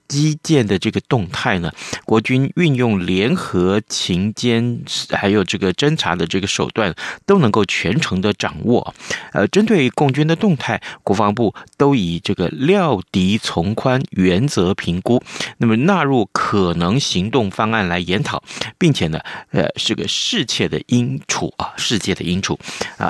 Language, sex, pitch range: Chinese, male, 95-130 Hz